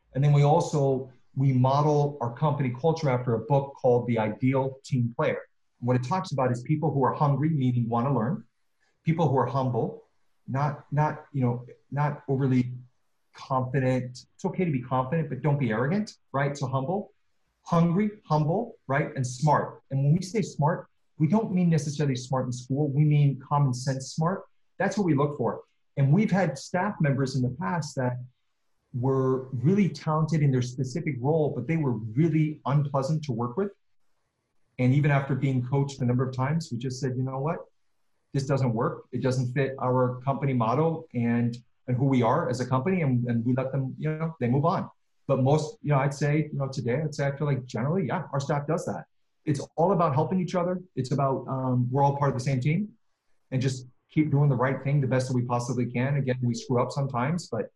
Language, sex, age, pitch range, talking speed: English, male, 40-59, 130-155 Hz, 205 wpm